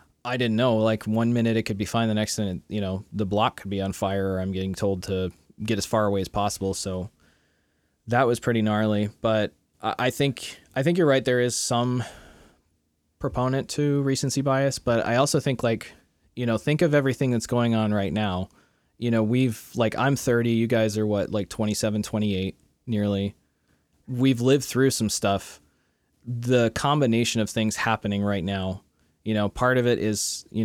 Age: 20-39